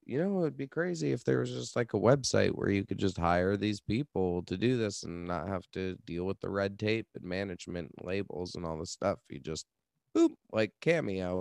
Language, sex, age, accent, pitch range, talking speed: English, male, 30-49, American, 90-105 Hz, 230 wpm